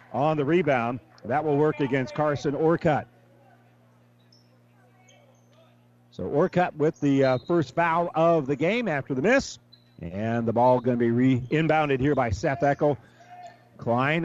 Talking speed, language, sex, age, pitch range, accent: 145 wpm, English, male, 50-69, 130-165 Hz, American